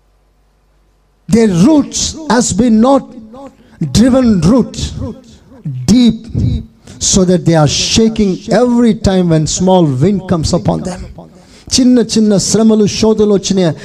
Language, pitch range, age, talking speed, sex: Telugu, 185-255 Hz, 50-69, 115 wpm, male